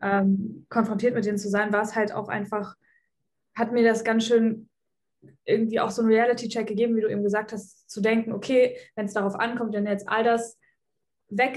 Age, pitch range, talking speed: 20-39, 205-235 Hz, 200 wpm